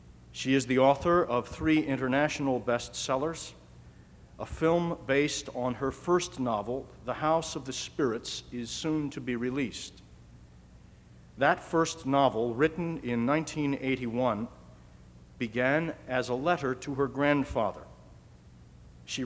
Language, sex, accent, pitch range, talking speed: English, male, American, 95-150 Hz, 120 wpm